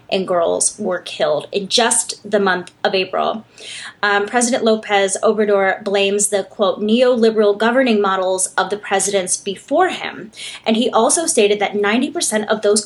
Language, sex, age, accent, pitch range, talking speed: English, female, 20-39, American, 195-230 Hz, 155 wpm